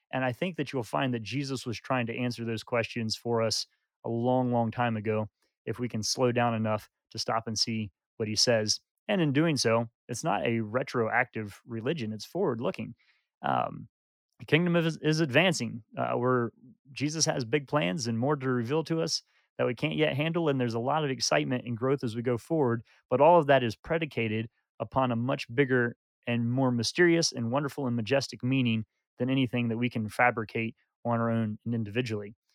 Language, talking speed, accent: English, 195 wpm, American